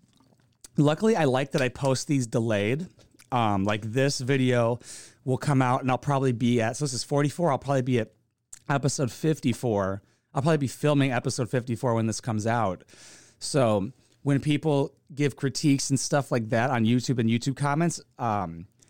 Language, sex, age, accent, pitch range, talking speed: English, male, 30-49, American, 120-145 Hz, 175 wpm